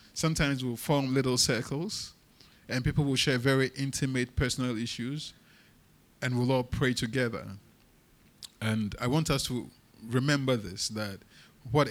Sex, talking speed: male, 135 wpm